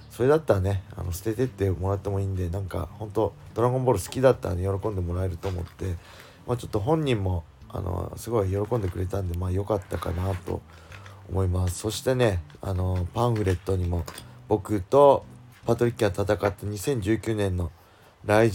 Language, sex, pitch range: Japanese, male, 90-110 Hz